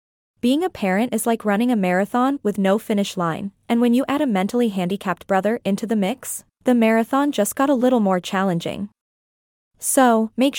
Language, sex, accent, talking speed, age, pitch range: English, female, American, 185 wpm, 20-39, 200-250 Hz